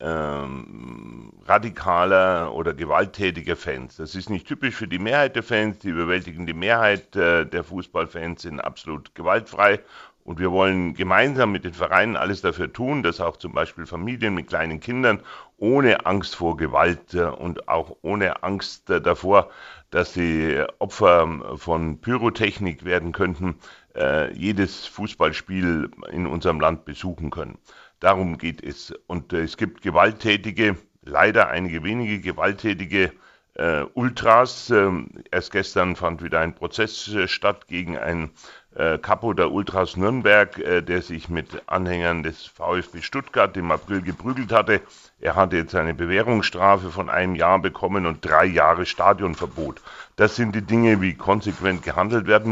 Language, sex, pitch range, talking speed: German, male, 85-105 Hz, 145 wpm